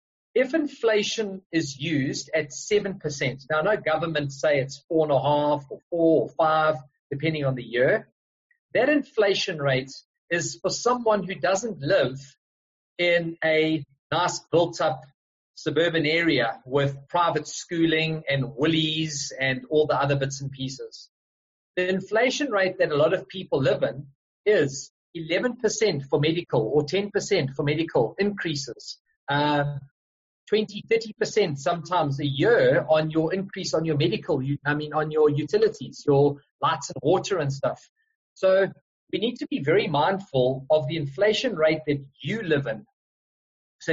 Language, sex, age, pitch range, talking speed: English, male, 40-59, 140-190 Hz, 145 wpm